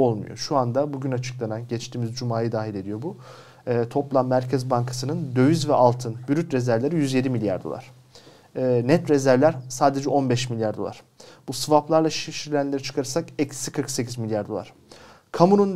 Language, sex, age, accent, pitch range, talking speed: Turkish, male, 40-59, native, 125-150 Hz, 145 wpm